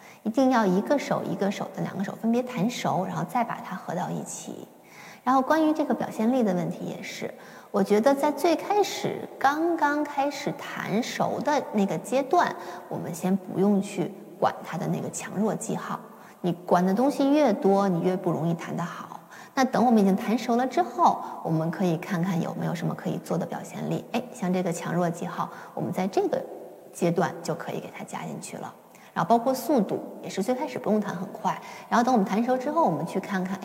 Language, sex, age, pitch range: Chinese, female, 20-39, 190-260 Hz